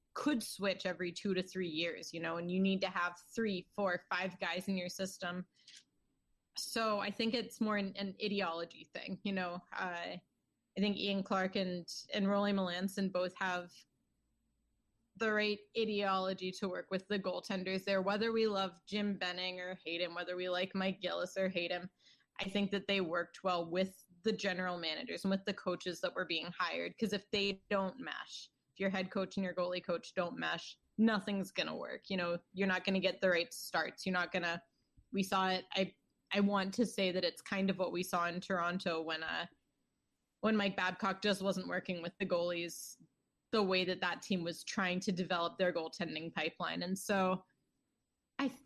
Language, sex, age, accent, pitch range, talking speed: English, female, 20-39, American, 180-200 Hz, 195 wpm